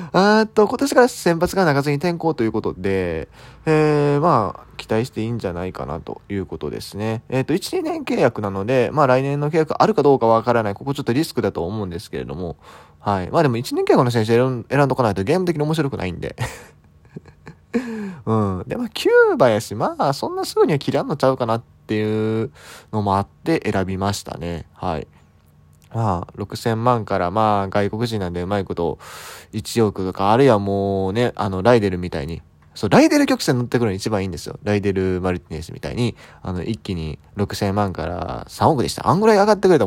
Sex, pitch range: male, 95-145 Hz